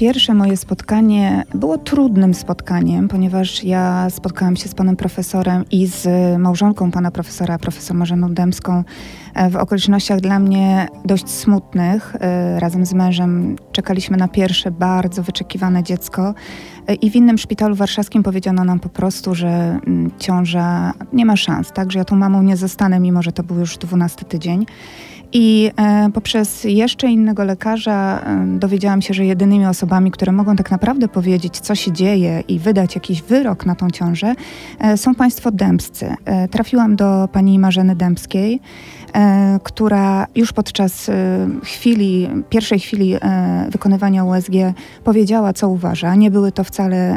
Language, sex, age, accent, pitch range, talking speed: Polish, female, 20-39, native, 180-205 Hz, 140 wpm